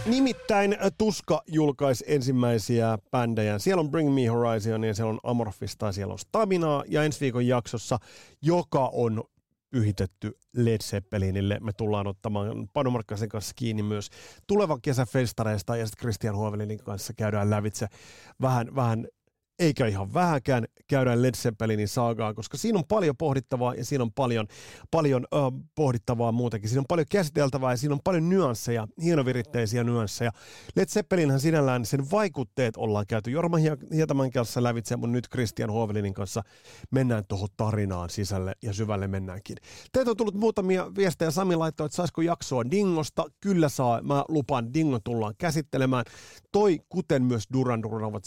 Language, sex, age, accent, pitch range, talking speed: Finnish, male, 30-49, native, 110-150 Hz, 150 wpm